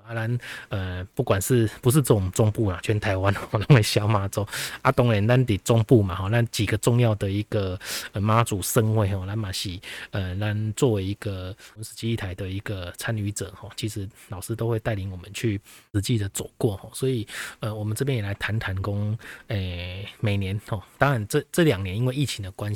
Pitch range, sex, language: 100-120 Hz, male, Chinese